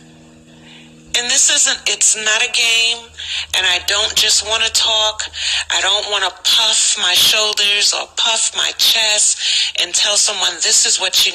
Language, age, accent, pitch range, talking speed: English, 40-59, American, 155-235 Hz, 170 wpm